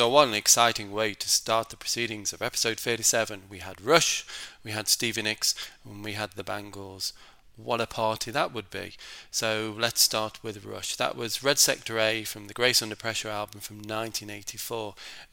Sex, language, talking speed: male, English, 190 wpm